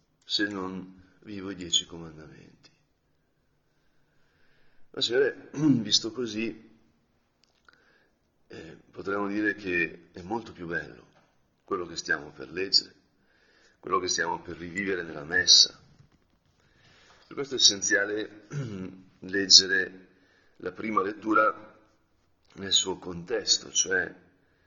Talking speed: 110 wpm